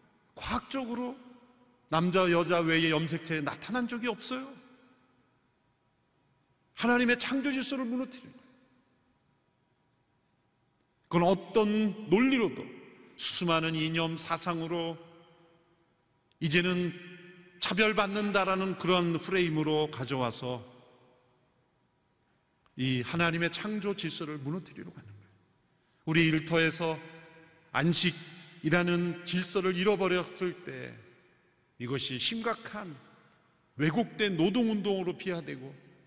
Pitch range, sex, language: 145-190 Hz, male, Korean